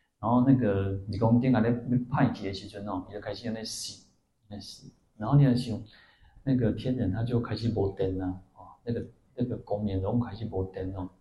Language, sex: Chinese, male